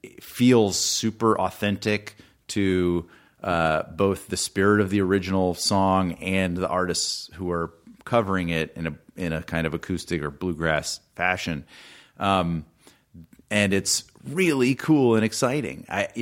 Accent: American